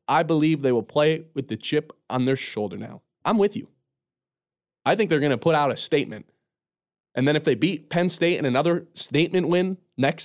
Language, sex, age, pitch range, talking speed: English, male, 20-39, 140-195 Hz, 210 wpm